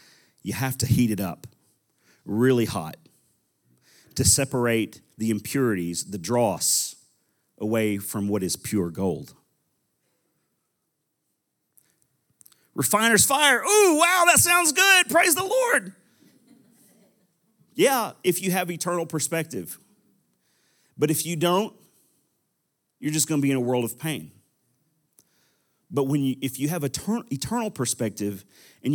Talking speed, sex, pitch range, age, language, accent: 125 wpm, male, 115-160 Hz, 40-59, English, American